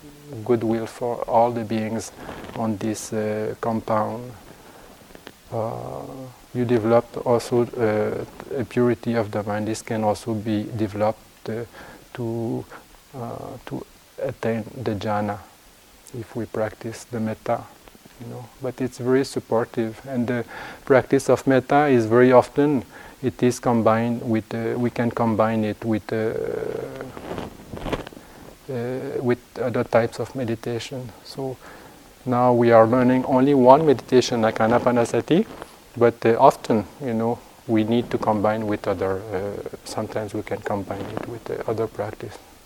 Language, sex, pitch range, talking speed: English, male, 110-125 Hz, 140 wpm